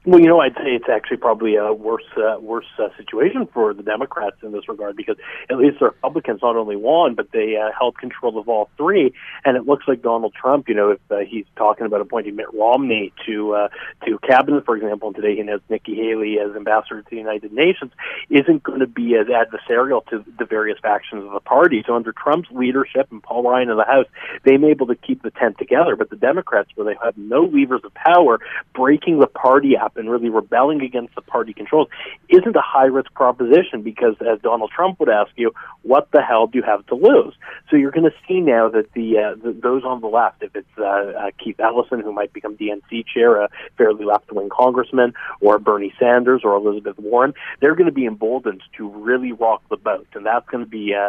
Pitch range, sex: 105-125 Hz, male